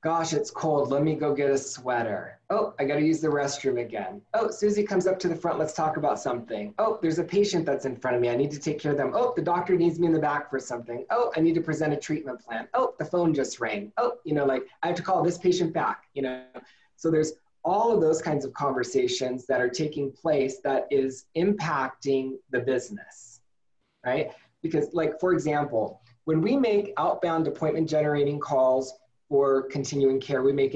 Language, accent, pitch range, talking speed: English, American, 130-160 Hz, 220 wpm